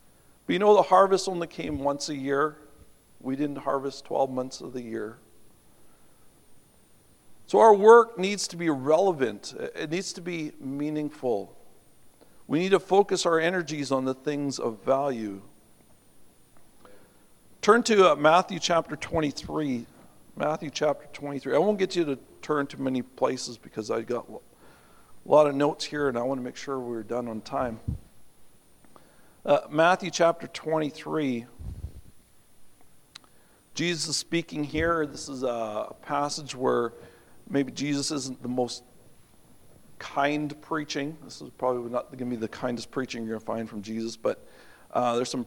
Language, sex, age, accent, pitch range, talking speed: English, male, 50-69, American, 125-165 Hz, 155 wpm